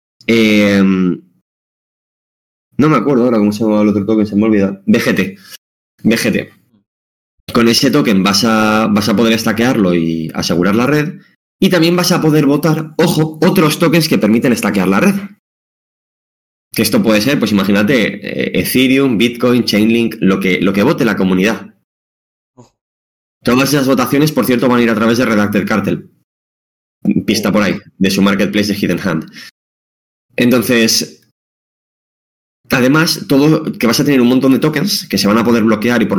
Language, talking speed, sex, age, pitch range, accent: Spanish, 165 wpm, male, 20-39, 100-135 Hz, Spanish